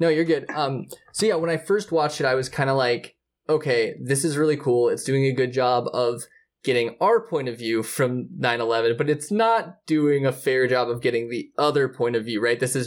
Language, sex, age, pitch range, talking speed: English, male, 20-39, 120-150 Hz, 240 wpm